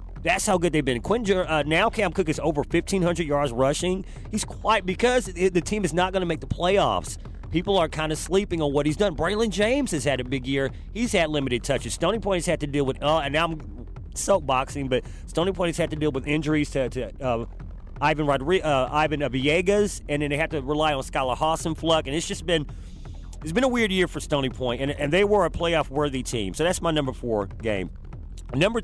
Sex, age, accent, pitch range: male, 40-59, American, 140-170 Hz